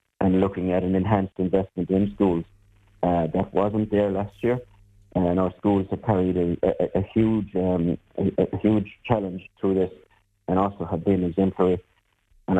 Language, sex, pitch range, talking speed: English, male, 90-100 Hz, 170 wpm